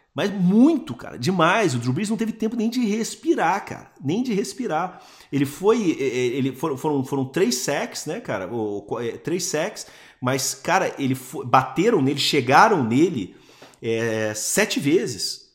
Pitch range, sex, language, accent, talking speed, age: 120-195 Hz, male, Portuguese, Brazilian, 135 wpm, 40-59